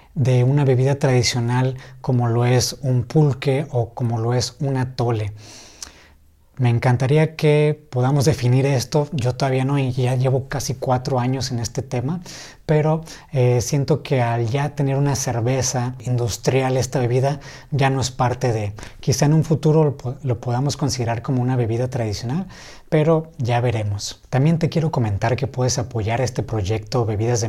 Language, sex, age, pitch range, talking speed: Spanish, male, 30-49, 120-140 Hz, 165 wpm